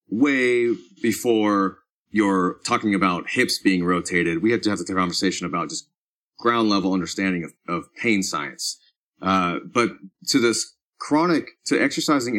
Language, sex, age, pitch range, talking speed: English, male, 30-49, 95-110 Hz, 145 wpm